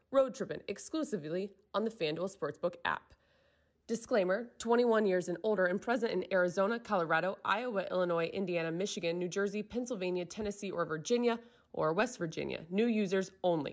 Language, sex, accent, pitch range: English, female, American, 175-230 Hz